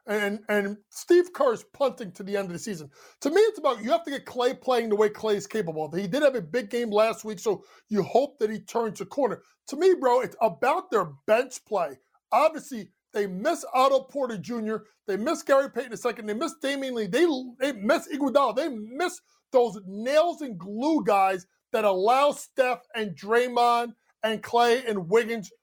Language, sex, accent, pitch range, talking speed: English, male, American, 210-285 Hz, 200 wpm